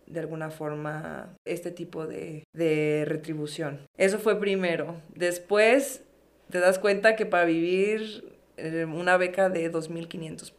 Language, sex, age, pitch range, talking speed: Spanish, female, 20-39, 170-200 Hz, 130 wpm